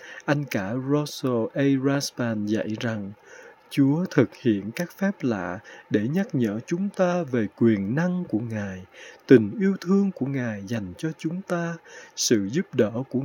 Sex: male